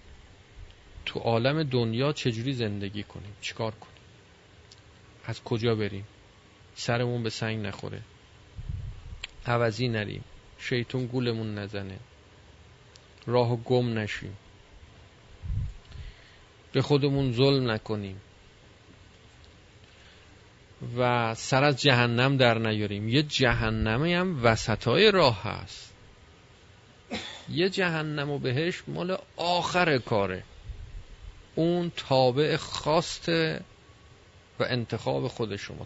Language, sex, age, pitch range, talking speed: Persian, male, 40-59, 100-130 Hz, 90 wpm